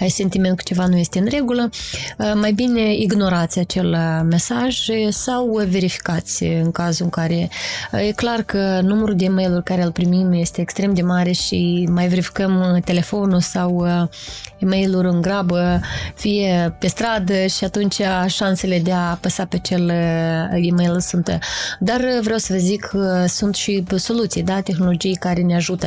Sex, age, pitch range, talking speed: female, 20-39, 175-200 Hz, 155 wpm